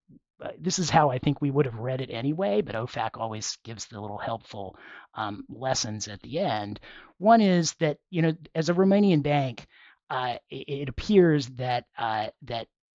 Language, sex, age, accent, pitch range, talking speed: English, male, 40-59, American, 110-150 Hz, 180 wpm